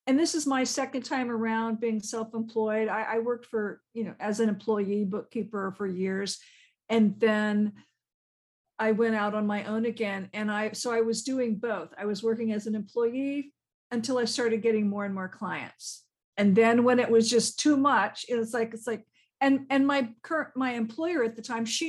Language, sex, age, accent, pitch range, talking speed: English, female, 50-69, American, 205-245 Hz, 200 wpm